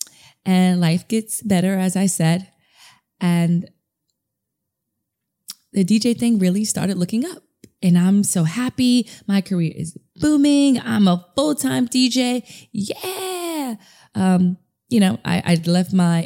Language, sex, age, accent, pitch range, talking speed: English, female, 20-39, American, 160-195 Hz, 130 wpm